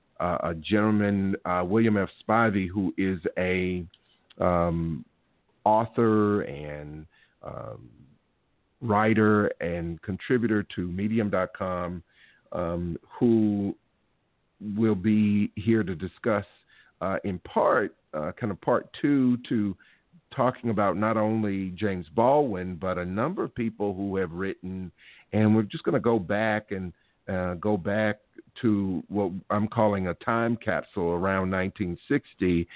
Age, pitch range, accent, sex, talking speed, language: 50-69, 90-110 Hz, American, male, 125 wpm, English